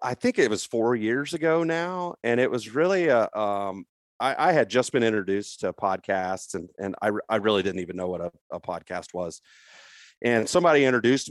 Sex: male